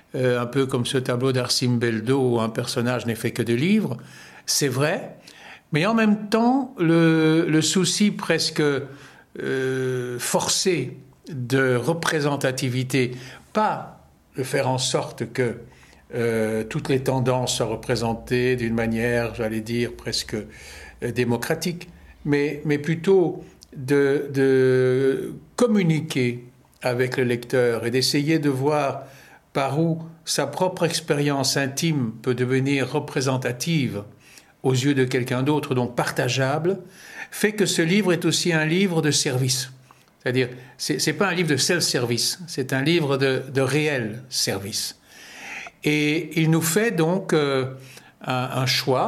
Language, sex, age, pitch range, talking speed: French, male, 60-79, 125-160 Hz, 135 wpm